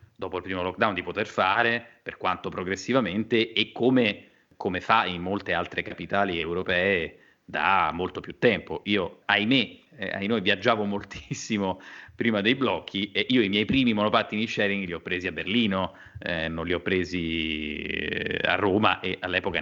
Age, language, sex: 30-49, Italian, male